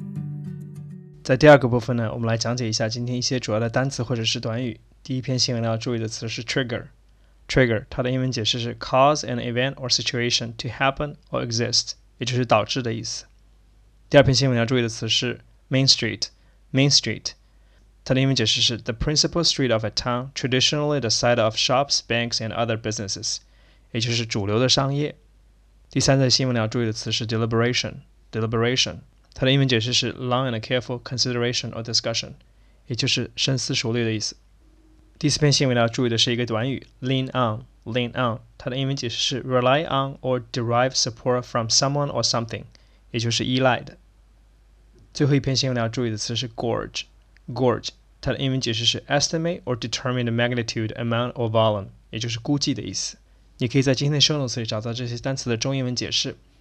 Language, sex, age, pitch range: Chinese, male, 20-39, 115-130 Hz